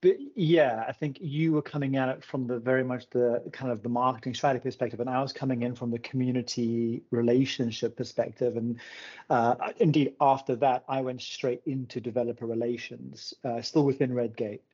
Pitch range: 120-135 Hz